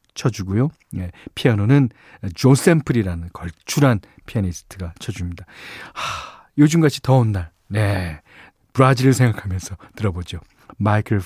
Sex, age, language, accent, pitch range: male, 40-59, Korean, native, 95-145 Hz